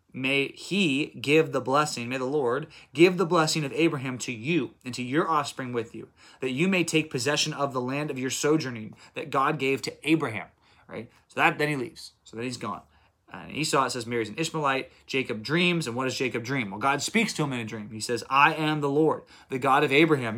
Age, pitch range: 20-39, 125-155 Hz